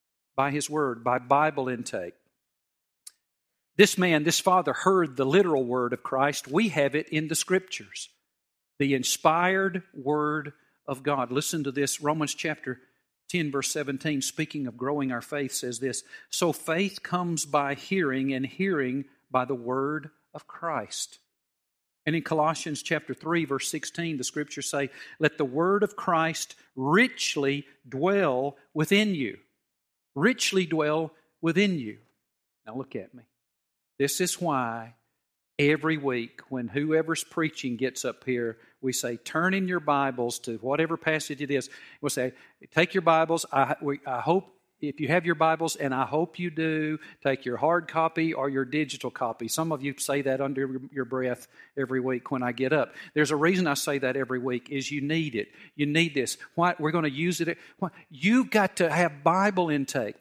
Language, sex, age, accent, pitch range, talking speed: English, male, 50-69, American, 135-175 Hz, 170 wpm